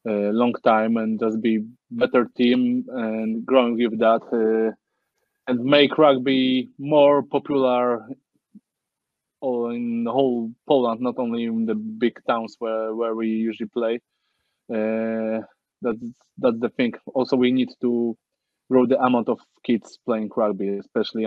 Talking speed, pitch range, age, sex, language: 145 wpm, 115-140 Hz, 20-39, male, English